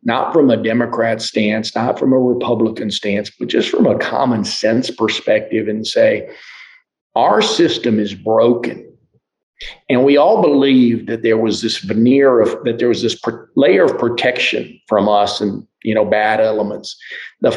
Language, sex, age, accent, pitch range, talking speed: English, male, 50-69, American, 110-130 Hz, 155 wpm